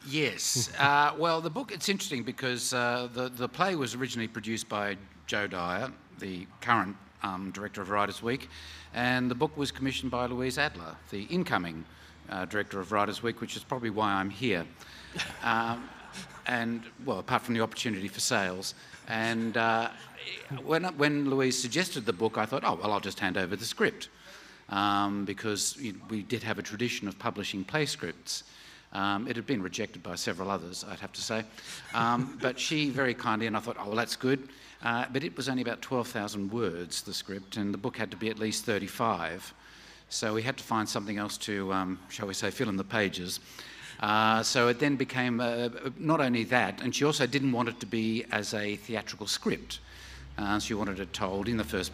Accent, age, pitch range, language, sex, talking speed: Australian, 50-69, 100-125 Hz, English, male, 200 wpm